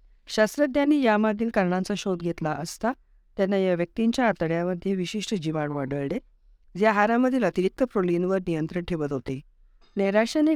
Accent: native